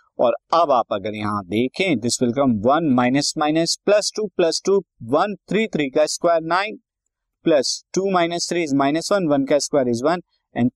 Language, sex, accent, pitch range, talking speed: Hindi, male, native, 120-170 Hz, 190 wpm